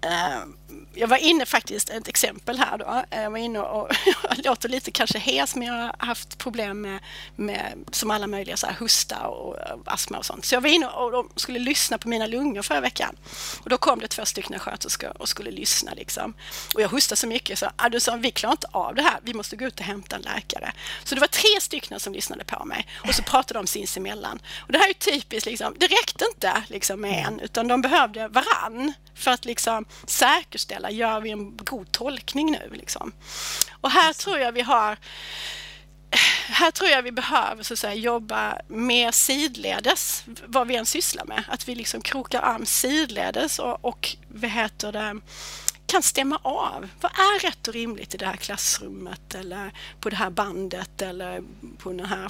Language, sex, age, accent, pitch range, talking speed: Swedish, female, 30-49, native, 215-285 Hz, 210 wpm